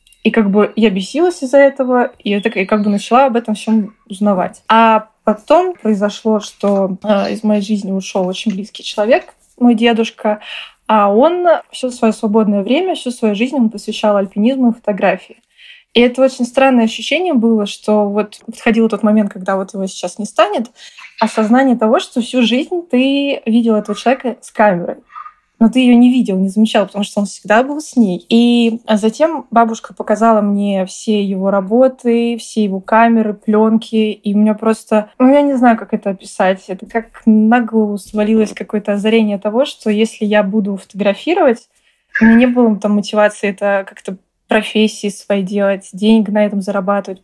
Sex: female